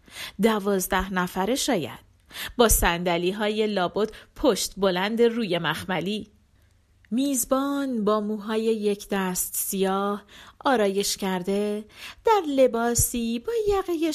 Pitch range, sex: 195-265 Hz, female